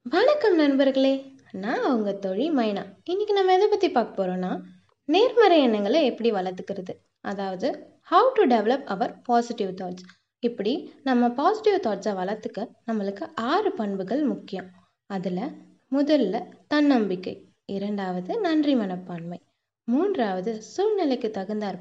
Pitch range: 195-280 Hz